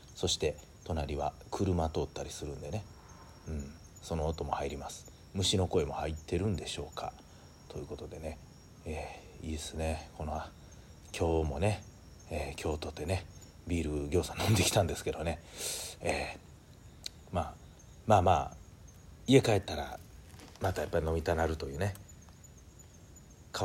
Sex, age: male, 40-59